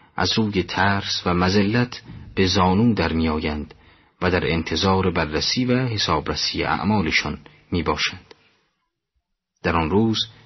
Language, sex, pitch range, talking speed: Persian, male, 90-115 Hz, 120 wpm